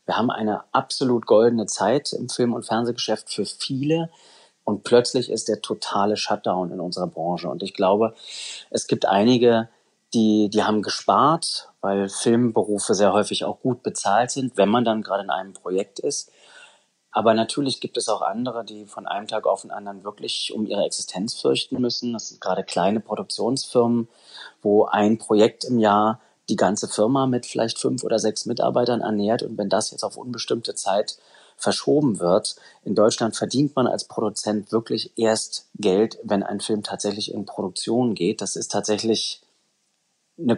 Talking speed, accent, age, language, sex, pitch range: 170 wpm, German, 30-49, German, male, 100-120 Hz